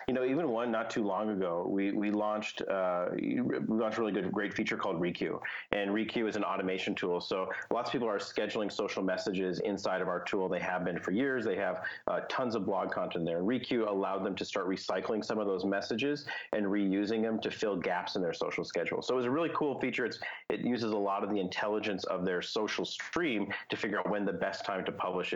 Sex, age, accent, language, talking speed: male, 30-49, American, English, 240 wpm